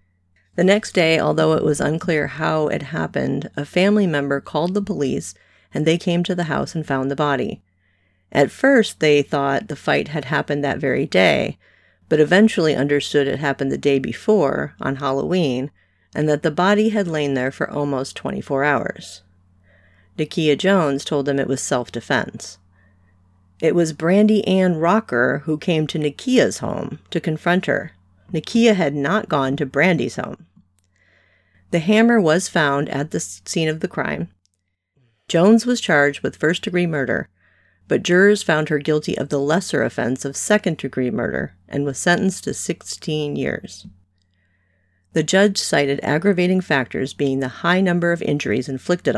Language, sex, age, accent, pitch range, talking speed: English, female, 40-59, American, 115-170 Hz, 160 wpm